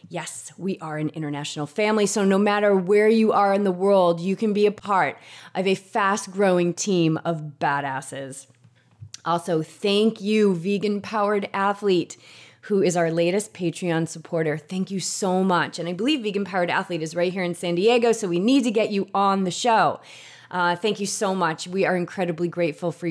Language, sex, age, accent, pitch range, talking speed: English, female, 30-49, American, 165-200 Hz, 190 wpm